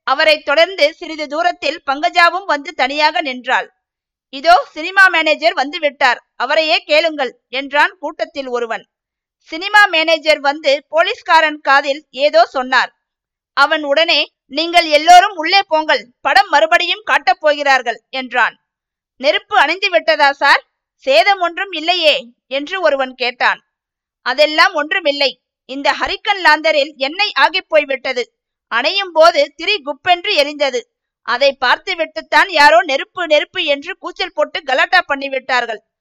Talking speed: 115 wpm